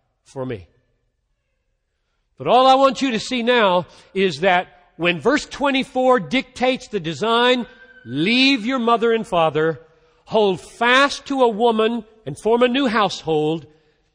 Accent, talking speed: American, 140 wpm